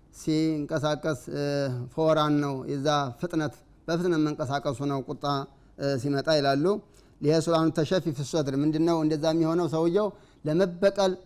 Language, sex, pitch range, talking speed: Amharic, male, 145-185 Hz, 100 wpm